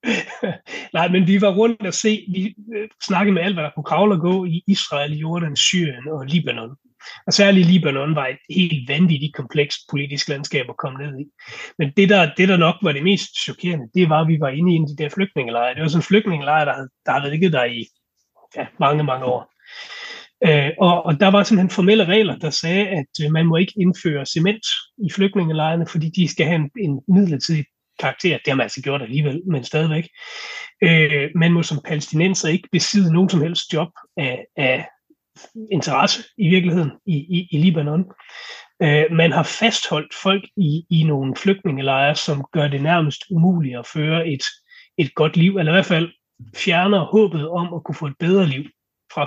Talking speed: 195 wpm